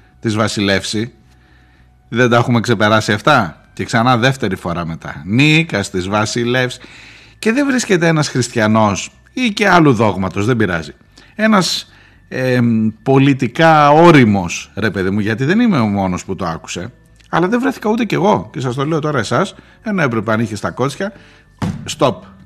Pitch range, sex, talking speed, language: 100-150 Hz, male, 160 wpm, Greek